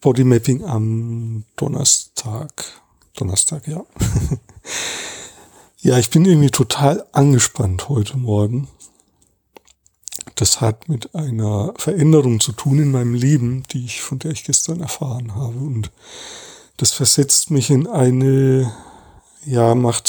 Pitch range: 110-150 Hz